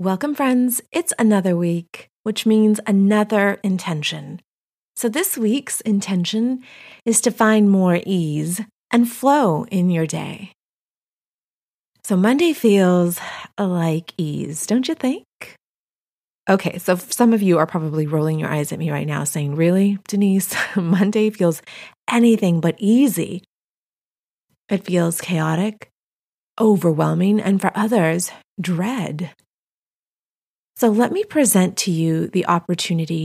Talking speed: 125 wpm